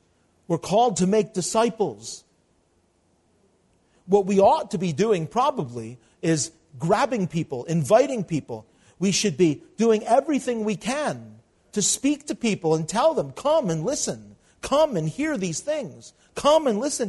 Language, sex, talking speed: English, male, 150 wpm